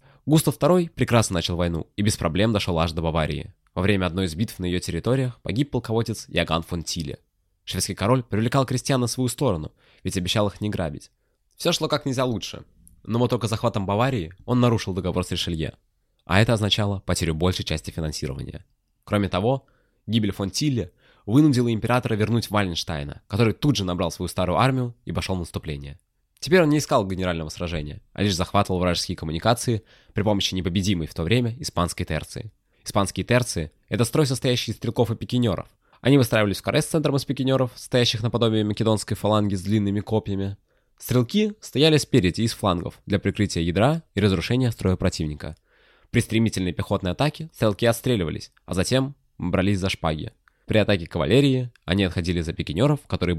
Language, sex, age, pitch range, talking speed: Russian, male, 20-39, 90-125 Hz, 170 wpm